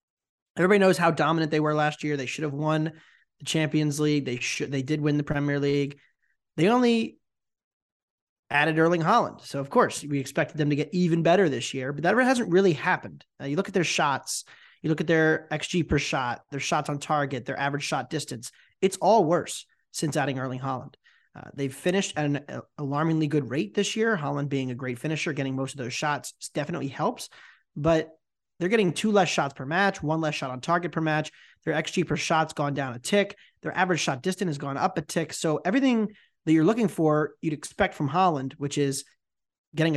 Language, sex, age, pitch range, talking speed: English, male, 30-49, 145-175 Hz, 210 wpm